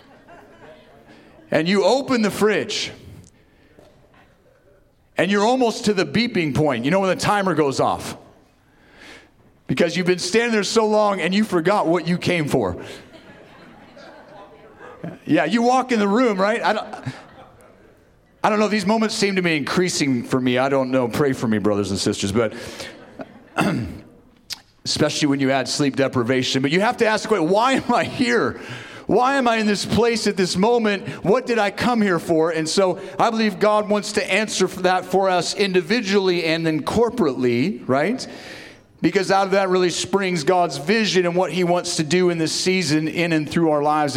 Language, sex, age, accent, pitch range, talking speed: English, male, 40-59, American, 155-210 Hz, 180 wpm